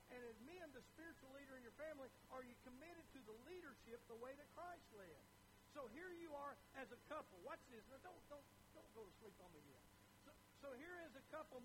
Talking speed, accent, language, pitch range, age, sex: 225 wpm, American, English, 215-320 Hz, 60-79, male